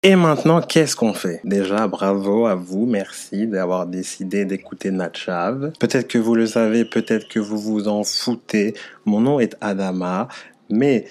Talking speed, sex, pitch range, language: 160 wpm, male, 100-115 Hz, French